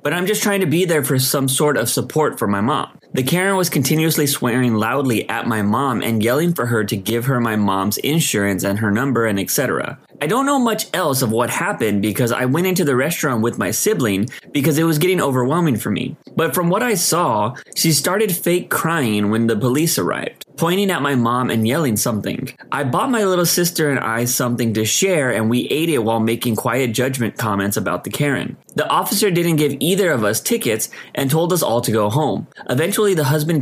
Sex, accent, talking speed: male, American, 220 wpm